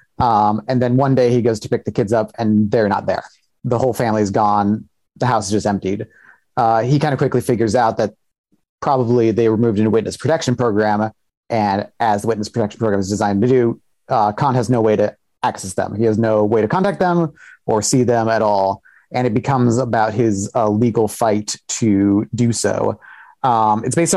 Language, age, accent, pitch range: English, 30-49, American, 105-125 Hz